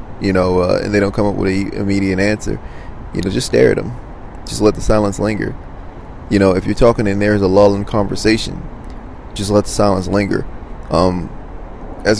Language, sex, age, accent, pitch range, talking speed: English, male, 20-39, American, 95-105 Hz, 195 wpm